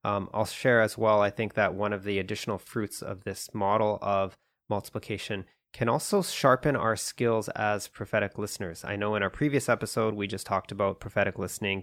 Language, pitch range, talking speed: English, 100-120 Hz, 195 wpm